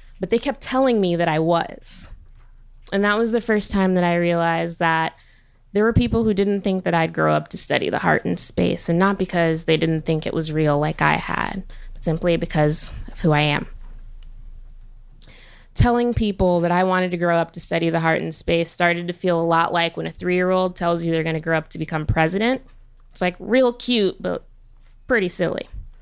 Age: 20-39